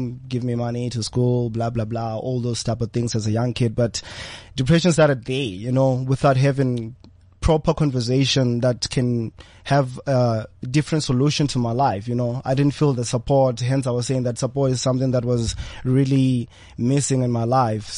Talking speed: 195 wpm